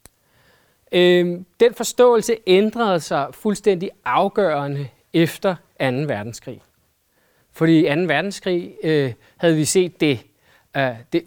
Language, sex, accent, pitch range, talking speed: Danish, male, native, 145-195 Hz, 100 wpm